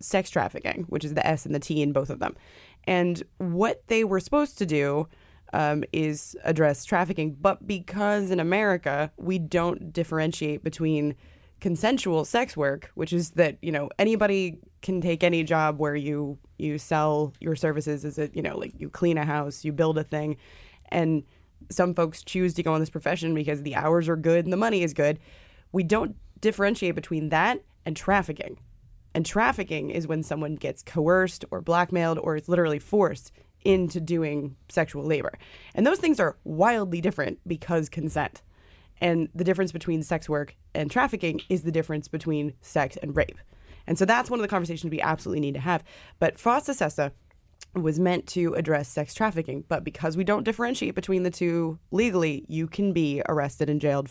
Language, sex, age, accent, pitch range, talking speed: English, female, 20-39, American, 150-180 Hz, 185 wpm